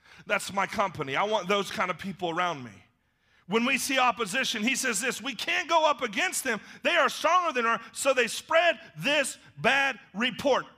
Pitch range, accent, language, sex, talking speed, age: 225-295 Hz, American, English, male, 195 wpm, 40-59